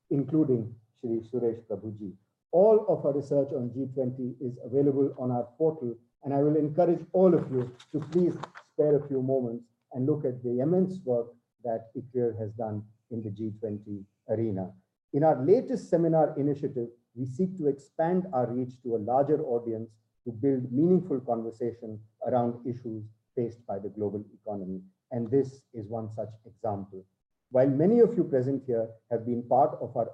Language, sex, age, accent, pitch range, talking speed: English, male, 50-69, Indian, 115-140 Hz, 170 wpm